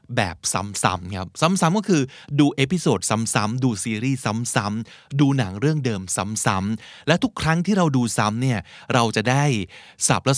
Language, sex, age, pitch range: Thai, male, 20-39, 110-150 Hz